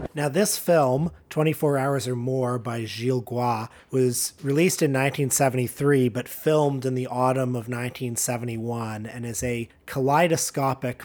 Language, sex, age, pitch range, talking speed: English, male, 30-49, 120-135 Hz, 135 wpm